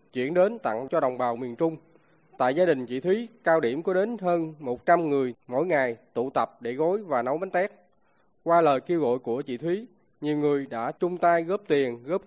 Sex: male